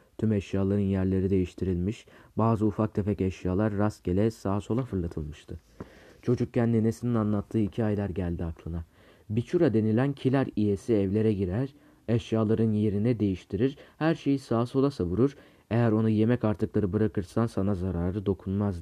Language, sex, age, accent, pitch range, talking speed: Turkish, male, 40-59, native, 95-115 Hz, 130 wpm